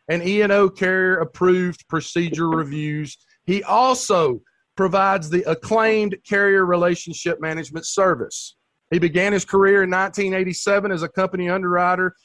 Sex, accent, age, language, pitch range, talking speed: male, American, 40-59, English, 175-210 Hz, 120 wpm